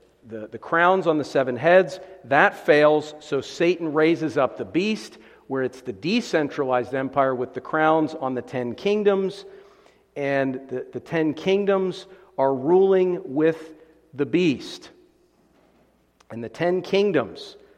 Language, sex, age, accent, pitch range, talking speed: English, male, 50-69, American, 135-185 Hz, 140 wpm